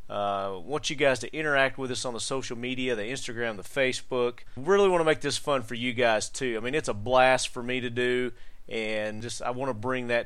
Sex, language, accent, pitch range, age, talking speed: male, English, American, 115-140 Hz, 30-49, 250 wpm